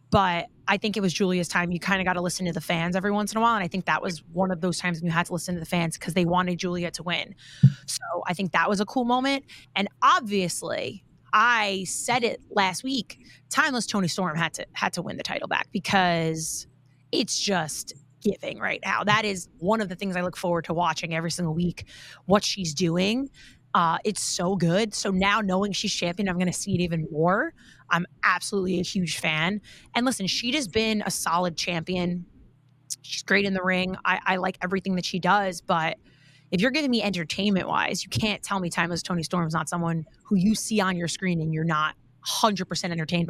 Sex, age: female, 30-49